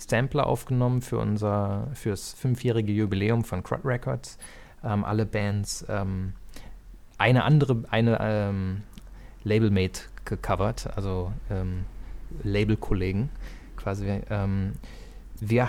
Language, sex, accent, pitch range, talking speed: German, male, German, 100-115 Hz, 105 wpm